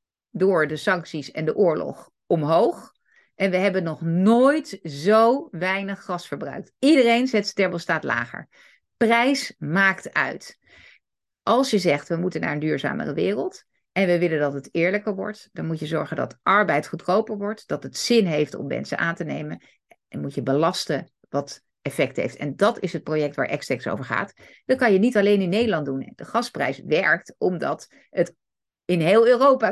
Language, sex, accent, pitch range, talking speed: Dutch, female, Dutch, 145-190 Hz, 180 wpm